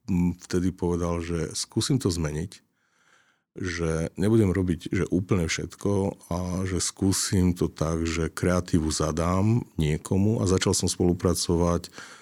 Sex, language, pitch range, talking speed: male, Slovak, 80-90 Hz, 125 wpm